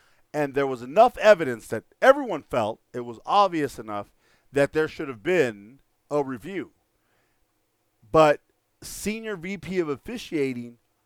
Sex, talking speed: male, 130 wpm